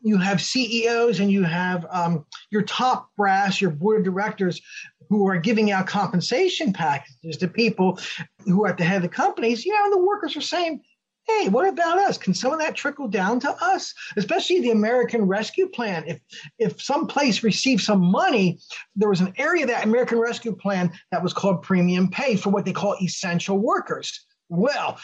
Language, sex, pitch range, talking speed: English, male, 185-245 Hz, 190 wpm